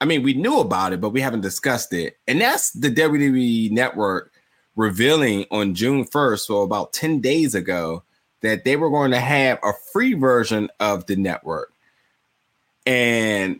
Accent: American